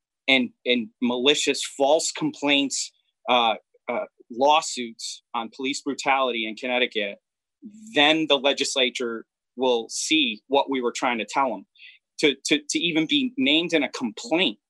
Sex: male